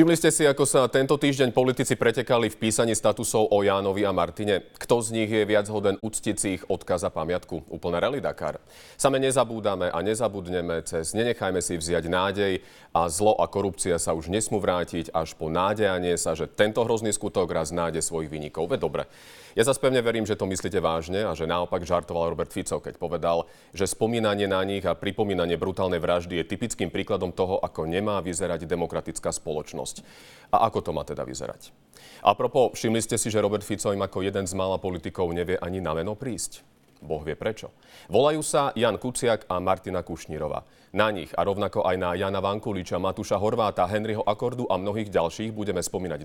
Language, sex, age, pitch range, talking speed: Slovak, male, 40-59, 90-115 Hz, 190 wpm